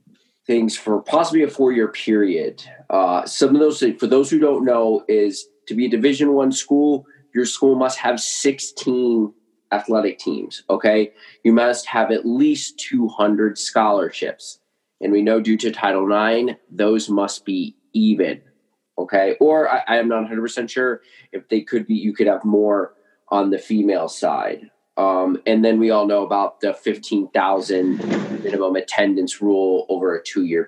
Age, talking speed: 20-39, 160 wpm